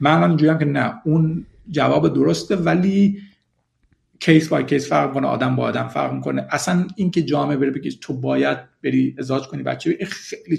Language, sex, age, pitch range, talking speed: Persian, male, 50-69, 135-205 Hz, 165 wpm